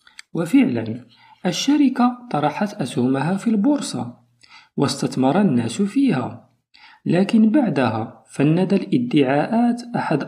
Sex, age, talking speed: male, 40-59, 80 wpm